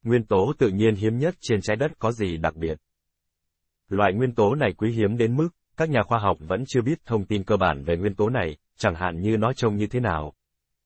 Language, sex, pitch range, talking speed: Vietnamese, male, 85-115 Hz, 245 wpm